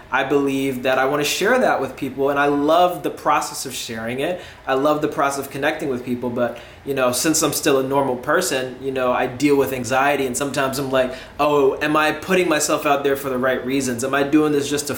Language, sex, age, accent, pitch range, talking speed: English, male, 20-39, American, 130-180 Hz, 250 wpm